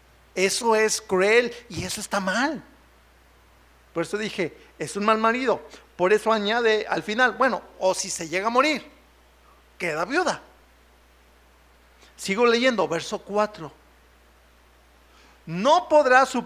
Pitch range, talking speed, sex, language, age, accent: 155-225 Hz, 130 wpm, male, Spanish, 50-69, Mexican